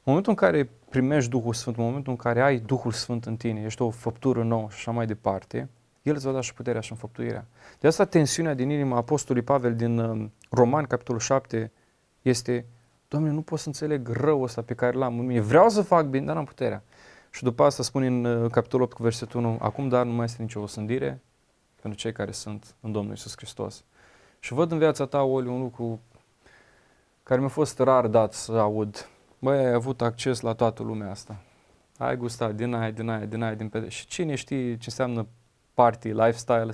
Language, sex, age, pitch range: Romanian, male, 20-39, 115-135 Hz